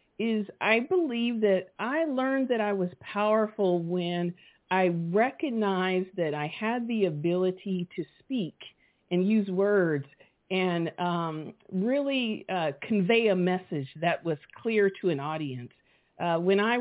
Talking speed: 140 wpm